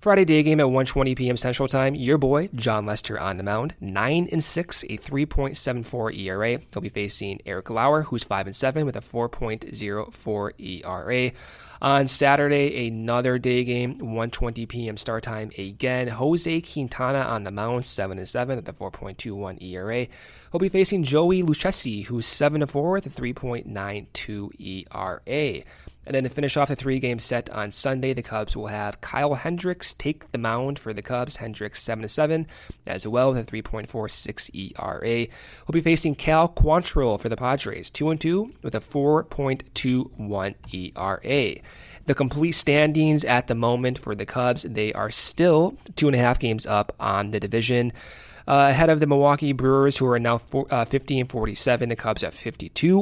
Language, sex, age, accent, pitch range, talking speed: English, male, 20-39, American, 110-145 Hz, 160 wpm